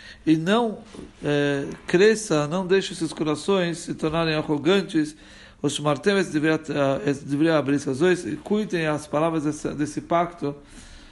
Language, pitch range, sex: Portuguese, 150-190 Hz, male